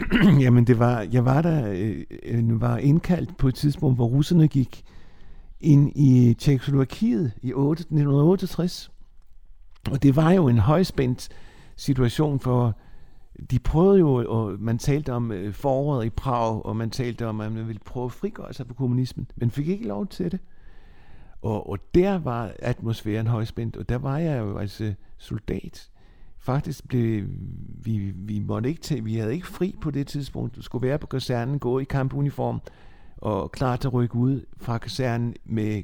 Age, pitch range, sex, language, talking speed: 60-79, 105-140 Hz, male, Danish, 170 wpm